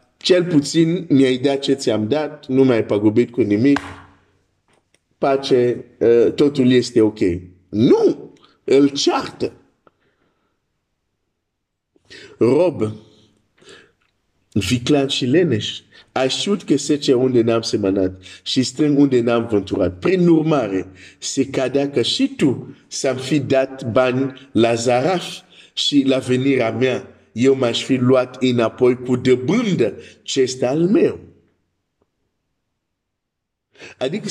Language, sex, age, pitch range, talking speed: Romanian, male, 50-69, 115-150 Hz, 110 wpm